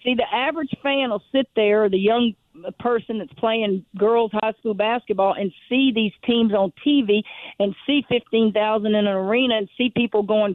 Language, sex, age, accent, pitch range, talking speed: English, female, 50-69, American, 200-245 Hz, 180 wpm